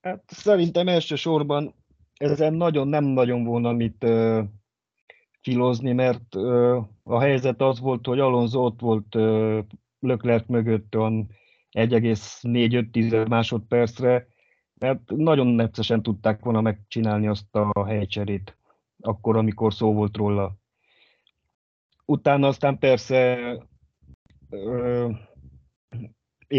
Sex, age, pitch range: male, 30-49, 105-120 Hz